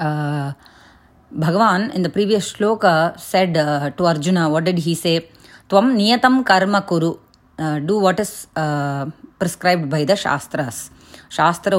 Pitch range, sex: 155-210 Hz, female